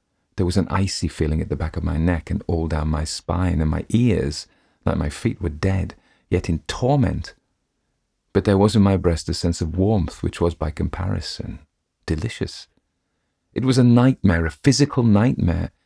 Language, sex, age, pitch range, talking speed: English, male, 40-59, 80-95 Hz, 185 wpm